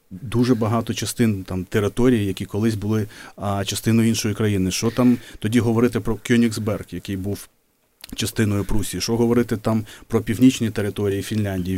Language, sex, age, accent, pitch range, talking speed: Ukrainian, male, 30-49, native, 100-120 Hz, 145 wpm